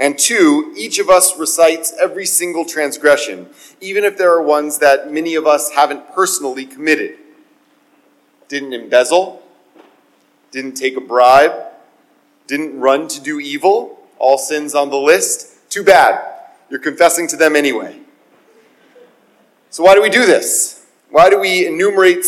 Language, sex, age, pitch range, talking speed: English, male, 30-49, 140-205 Hz, 145 wpm